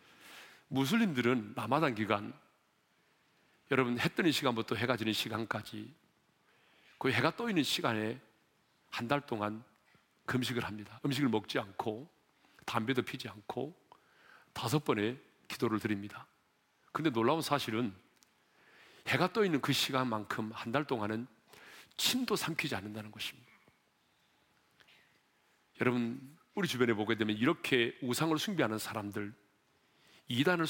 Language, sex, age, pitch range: Korean, male, 40-59, 110-160 Hz